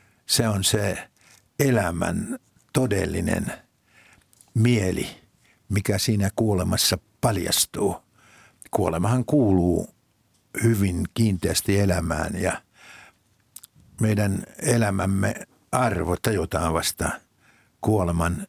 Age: 60-79